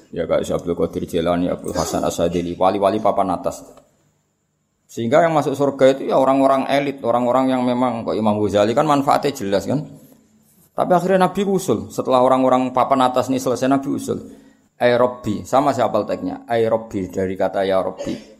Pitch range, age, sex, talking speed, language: 95-130 Hz, 20-39, male, 175 wpm, Malay